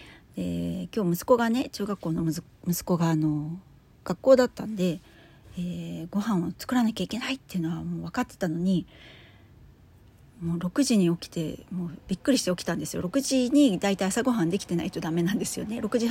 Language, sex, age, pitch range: Japanese, female, 40-59, 170-220 Hz